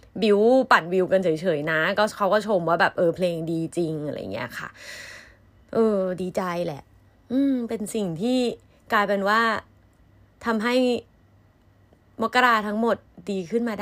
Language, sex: Thai, female